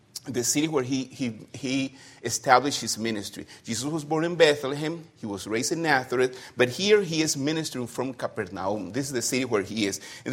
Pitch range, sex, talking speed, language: 120-160 Hz, male, 200 wpm, English